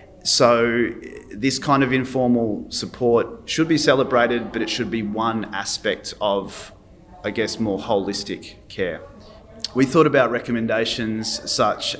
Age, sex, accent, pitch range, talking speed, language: 30-49, male, Australian, 100-120 Hz, 130 wpm, English